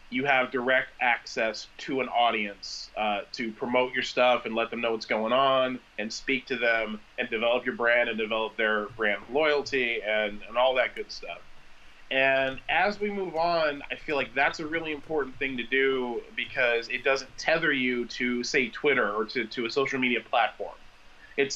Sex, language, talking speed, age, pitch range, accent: male, English, 190 wpm, 30-49, 115-150 Hz, American